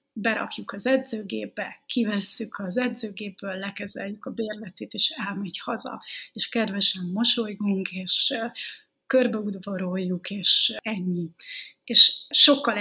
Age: 30-49